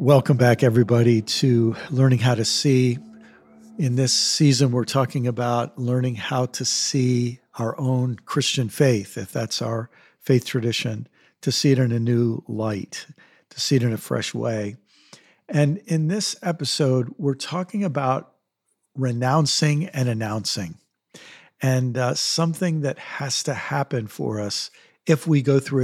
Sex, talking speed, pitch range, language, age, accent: male, 150 wpm, 120-150 Hz, English, 50-69, American